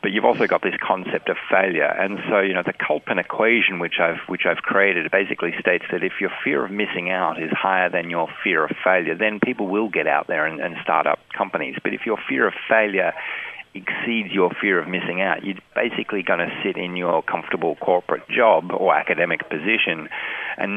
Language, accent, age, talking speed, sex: English, Australian, 40-59, 210 wpm, male